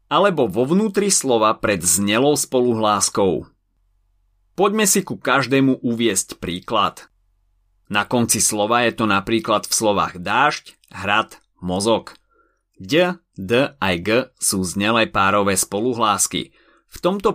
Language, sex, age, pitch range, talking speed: Slovak, male, 30-49, 95-130 Hz, 120 wpm